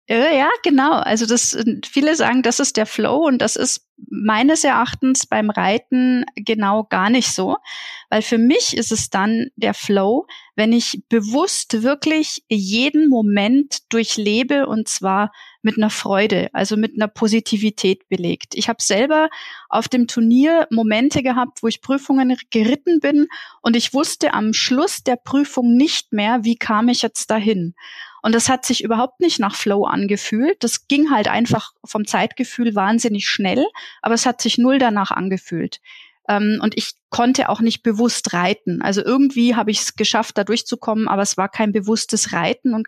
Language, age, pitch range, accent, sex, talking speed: German, 30-49, 215-265 Hz, German, female, 170 wpm